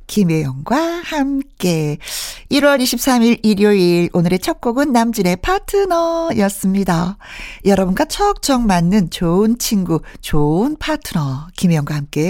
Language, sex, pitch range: Korean, female, 175-265 Hz